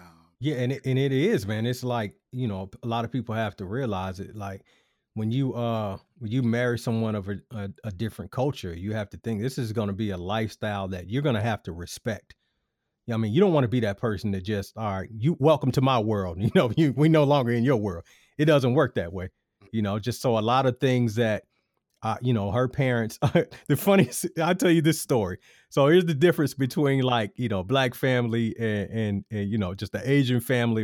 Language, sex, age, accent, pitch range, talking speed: English, male, 30-49, American, 105-135 Hz, 240 wpm